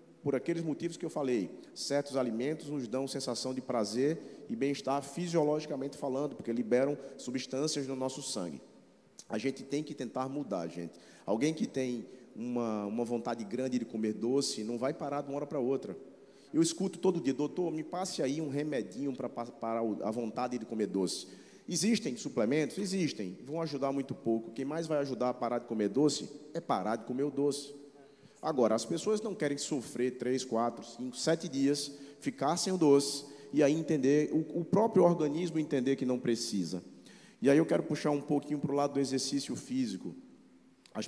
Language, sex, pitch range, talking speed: Portuguese, male, 120-150 Hz, 180 wpm